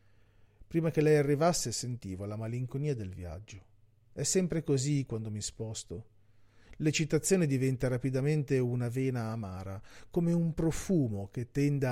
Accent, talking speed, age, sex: native, 130 wpm, 40-59, male